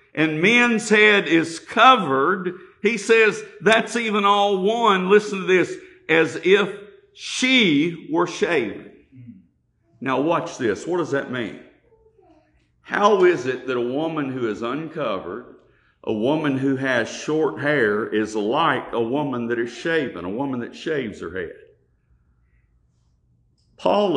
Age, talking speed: 50-69, 135 wpm